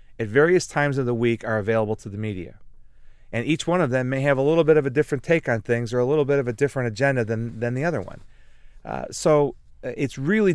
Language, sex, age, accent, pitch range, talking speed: English, male, 30-49, American, 110-135 Hz, 250 wpm